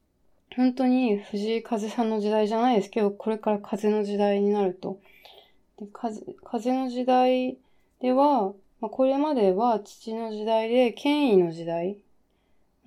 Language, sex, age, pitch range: Japanese, female, 20-39, 185-240 Hz